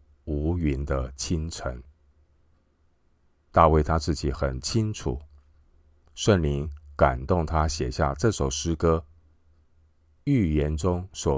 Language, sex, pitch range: Chinese, male, 70-80 Hz